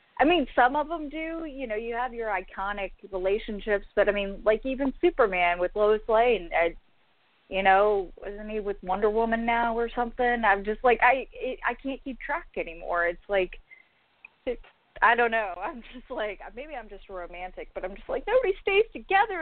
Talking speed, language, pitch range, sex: 190 wpm, English, 190-240 Hz, female